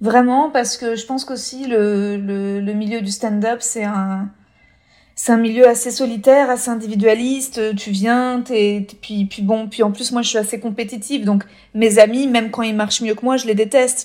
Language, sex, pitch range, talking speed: French, female, 210-240 Hz, 210 wpm